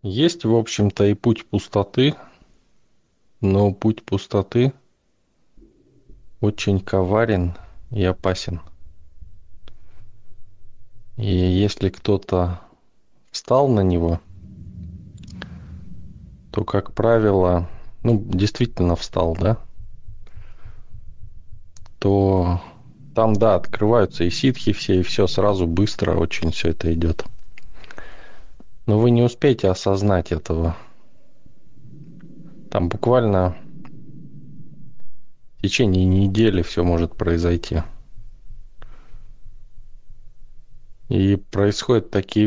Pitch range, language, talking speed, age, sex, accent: 90-110 Hz, Russian, 80 wpm, 20-39, male, native